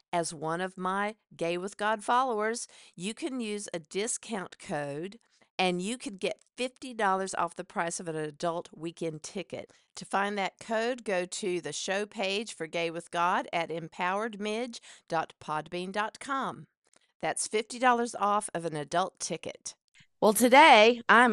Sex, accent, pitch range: female, American, 175-220 Hz